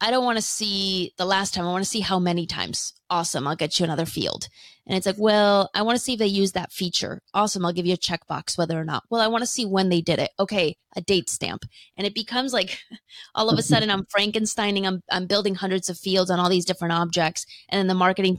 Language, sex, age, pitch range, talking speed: English, female, 20-39, 165-195 Hz, 265 wpm